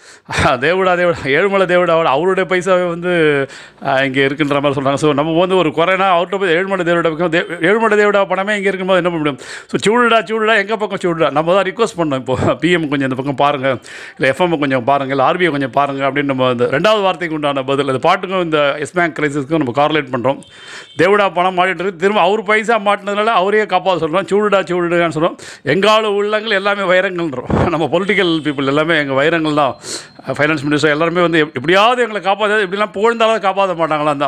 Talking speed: 180 wpm